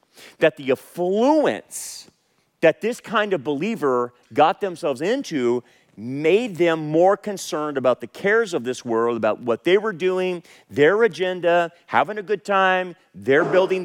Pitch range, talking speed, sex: 135-185 Hz, 145 wpm, male